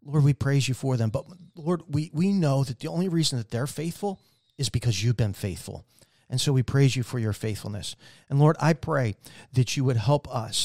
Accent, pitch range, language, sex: American, 115-140 Hz, English, male